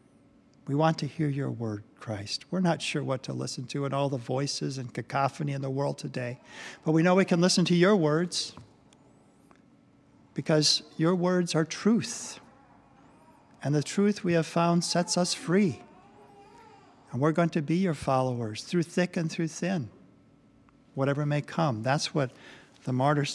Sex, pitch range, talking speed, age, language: male, 140-170 Hz, 170 wpm, 50-69, English